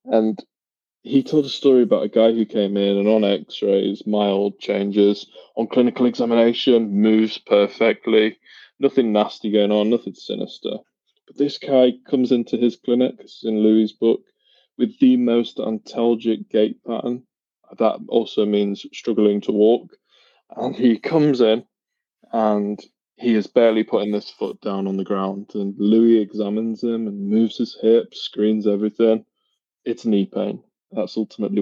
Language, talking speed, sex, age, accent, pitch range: English, 150 wpm, male, 20-39, British, 105-135 Hz